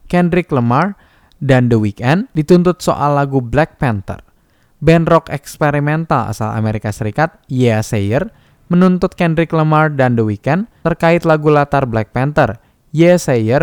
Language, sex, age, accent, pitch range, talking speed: Indonesian, male, 10-29, native, 110-155 Hz, 130 wpm